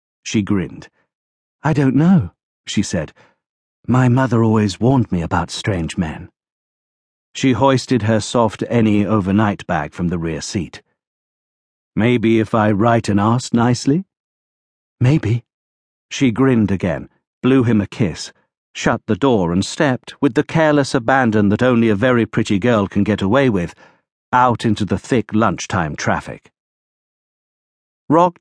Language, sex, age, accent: English, male, 50-69, British